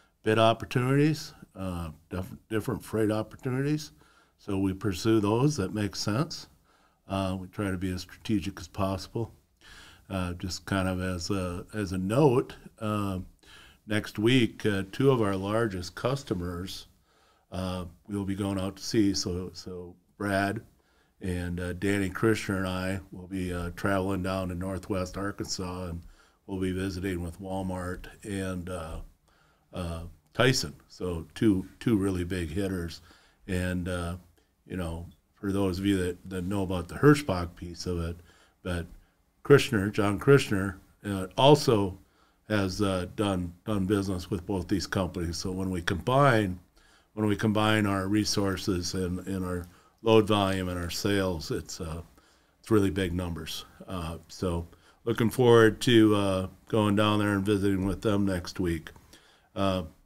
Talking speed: 150 wpm